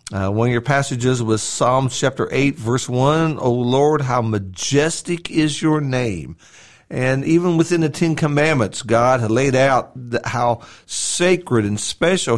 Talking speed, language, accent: 160 wpm, English, American